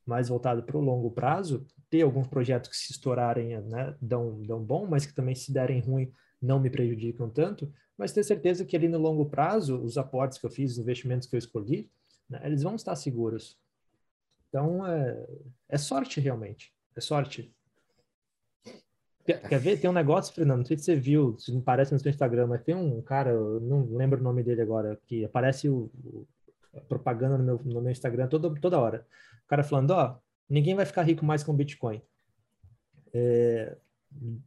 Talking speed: 190 wpm